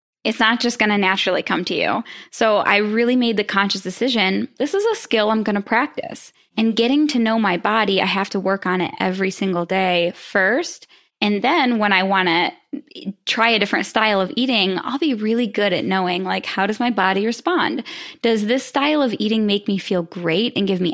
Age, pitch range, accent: 10-29, 185-235 Hz, American